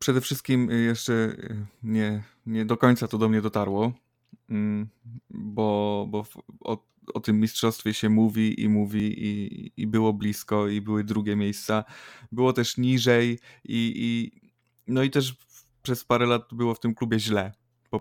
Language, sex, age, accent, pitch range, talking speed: Polish, male, 20-39, native, 110-125 Hz, 155 wpm